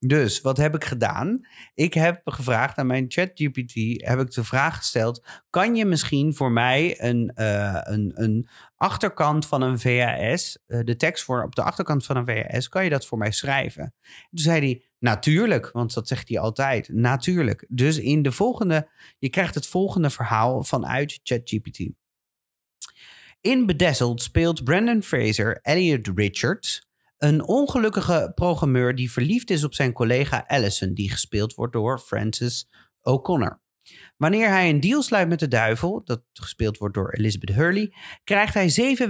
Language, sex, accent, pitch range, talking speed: Dutch, male, Dutch, 120-165 Hz, 165 wpm